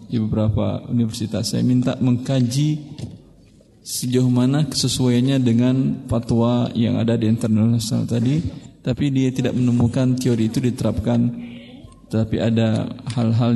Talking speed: 125 wpm